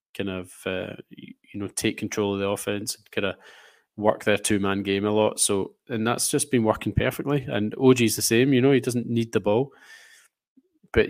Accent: British